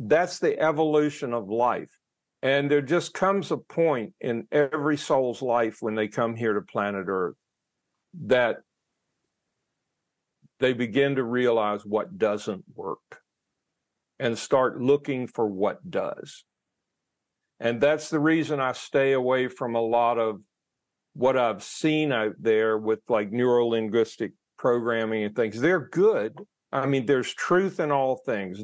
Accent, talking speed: American, 140 wpm